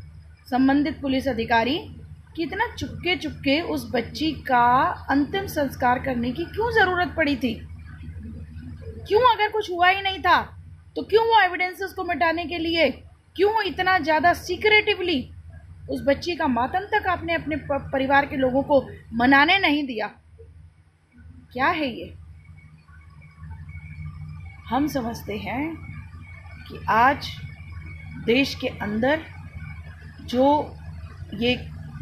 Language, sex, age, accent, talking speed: Hindi, female, 20-39, native, 120 wpm